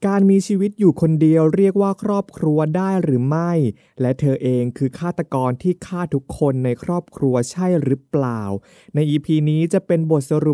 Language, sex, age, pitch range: Thai, male, 20-39, 125-175 Hz